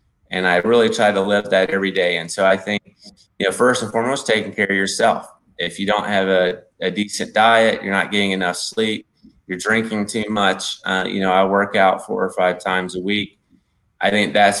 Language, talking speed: English, 220 wpm